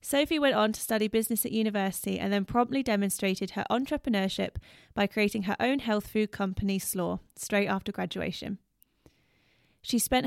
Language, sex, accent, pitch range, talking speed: English, female, British, 200-235 Hz, 160 wpm